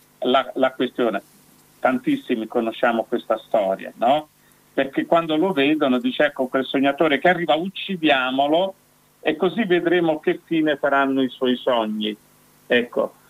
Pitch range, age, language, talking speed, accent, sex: 125-160 Hz, 50-69, Italian, 130 wpm, native, male